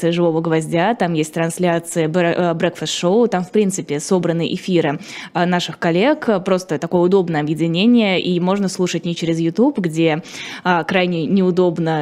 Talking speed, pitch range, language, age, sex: 135 wpm, 165-190 Hz, Russian, 20-39, female